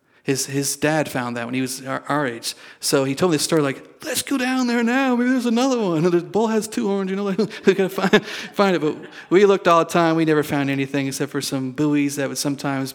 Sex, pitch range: male, 135-160 Hz